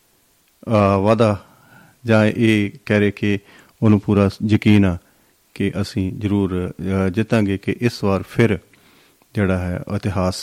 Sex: male